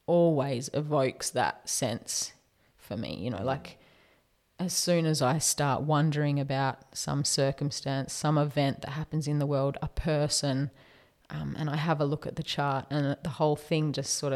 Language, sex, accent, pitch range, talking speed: English, female, Australian, 145-165 Hz, 175 wpm